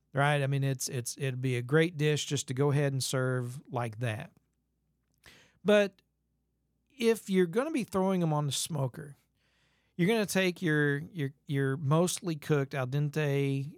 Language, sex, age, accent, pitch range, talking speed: English, male, 40-59, American, 135-165 Hz, 175 wpm